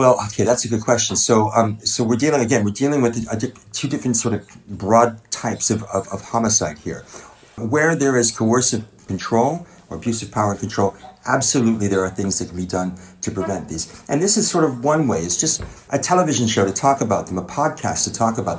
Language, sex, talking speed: English, male, 225 wpm